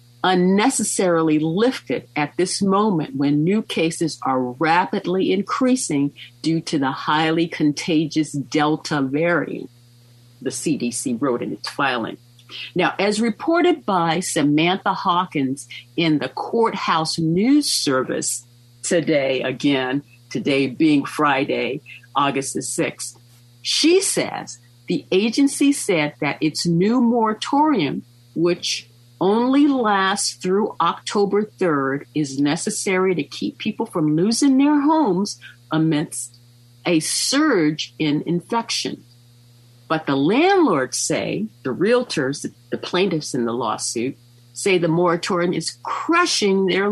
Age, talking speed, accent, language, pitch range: 50-69, 115 wpm, American, English, 125-190 Hz